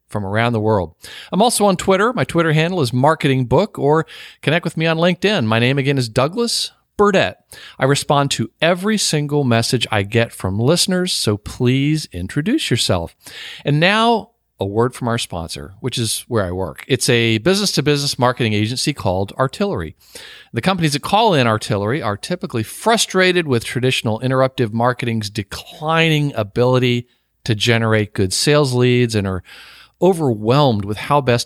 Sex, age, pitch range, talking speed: male, 50-69, 110-155 Hz, 160 wpm